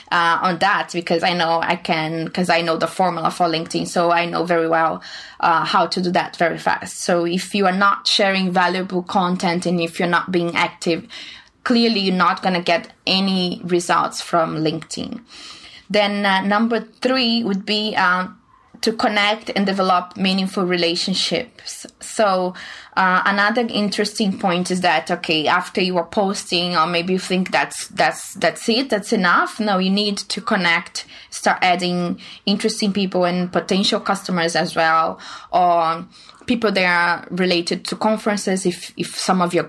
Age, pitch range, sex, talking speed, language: 20-39, 170-205 Hz, female, 170 wpm, English